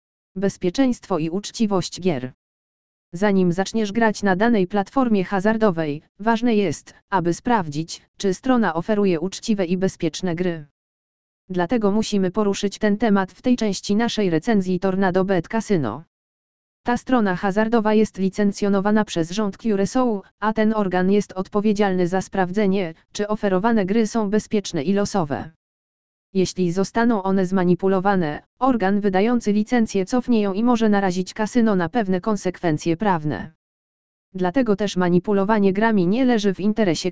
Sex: female